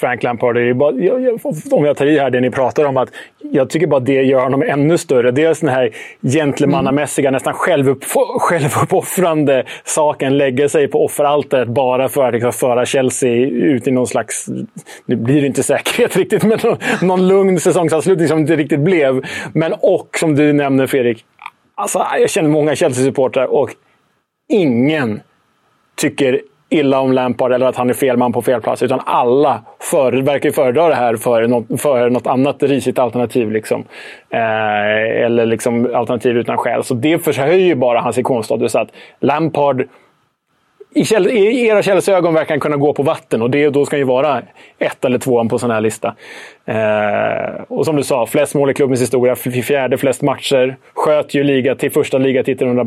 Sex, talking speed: male, 185 wpm